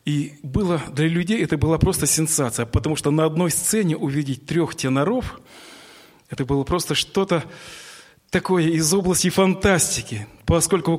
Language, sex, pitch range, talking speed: Russian, male, 130-170 Hz, 140 wpm